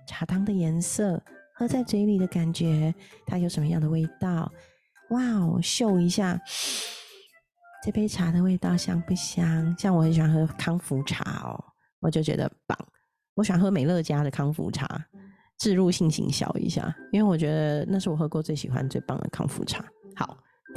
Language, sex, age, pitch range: Chinese, female, 30-49, 160-200 Hz